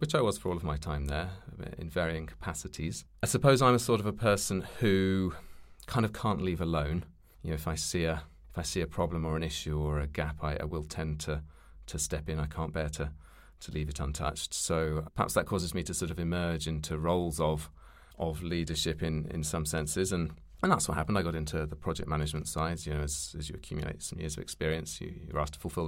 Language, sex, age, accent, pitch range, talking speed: English, male, 30-49, British, 75-95 Hz, 240 wpm